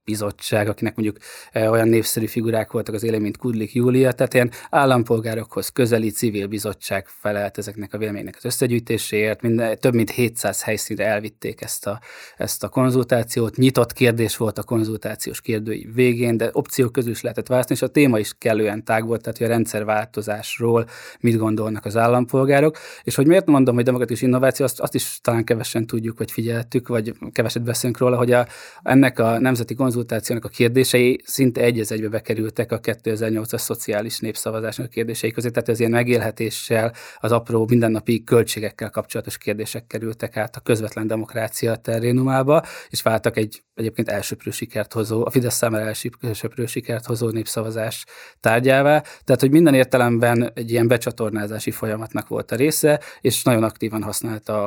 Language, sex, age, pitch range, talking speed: Hungarian, male, 20-39, 110-125 Hz, 160 wpm